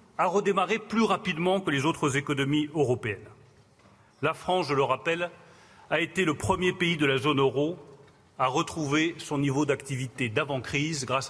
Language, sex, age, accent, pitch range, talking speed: French, male, 40-59, French, 135-195 Hz, 165 wpm